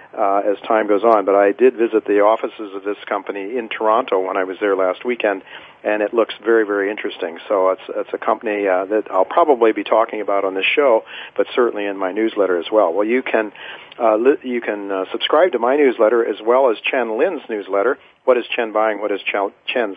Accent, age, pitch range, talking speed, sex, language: American, 50-69, 100-120 Hz, 225 wpm, male, English